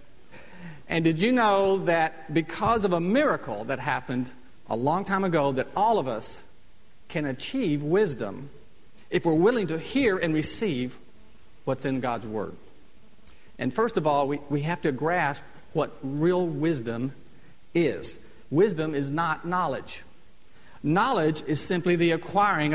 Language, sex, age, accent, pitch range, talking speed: English, male, 50-69, American, 150-195 Hz, 145 wpm